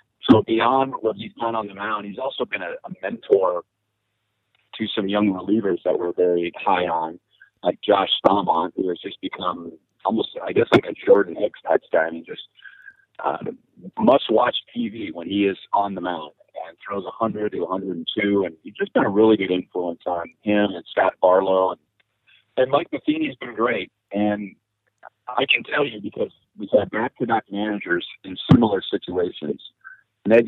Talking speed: 175 wpm